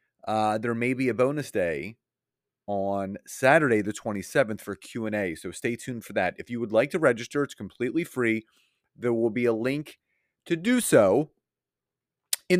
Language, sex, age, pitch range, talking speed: English, male, 30-49, 110-140 Hz, 170 wpm